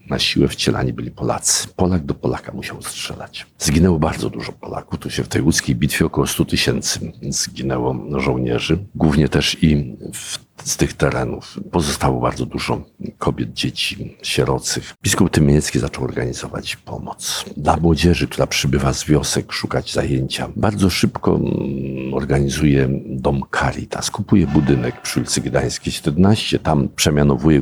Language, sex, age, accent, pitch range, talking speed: Polish, male, 50-69, native, 65-80 Hz, 135 wpm